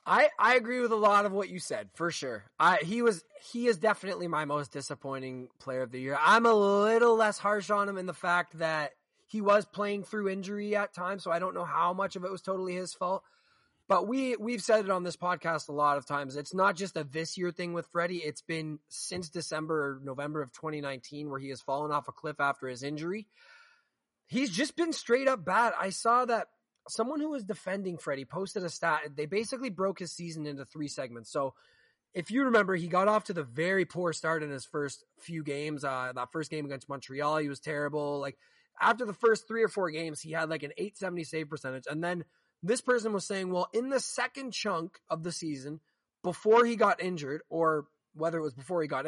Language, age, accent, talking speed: English, 20-39, American, 225 wpm